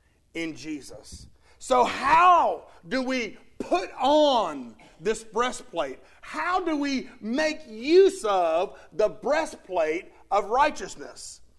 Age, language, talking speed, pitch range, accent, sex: 40-59, English, 105 wpm, 225-345 Hz, American, male